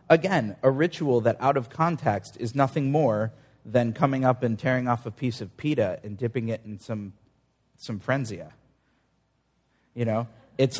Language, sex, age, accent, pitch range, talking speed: English, male, 30-49, American, 110-135 Hz, 165 wpm